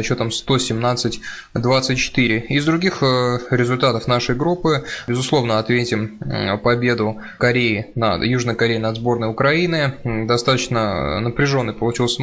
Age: 20-39